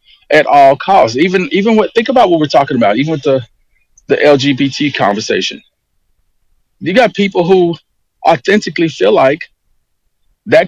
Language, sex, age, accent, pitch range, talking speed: English, male, 40-59, American, 140-180 Hz, 145 wpm